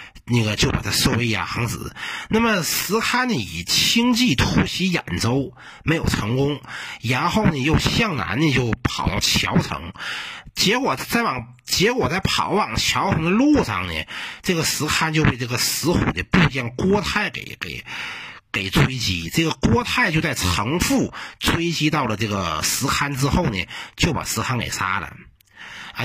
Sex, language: male, Chinese